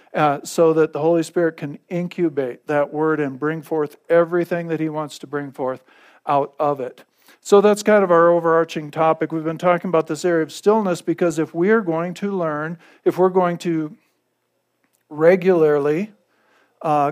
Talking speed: 175 wpm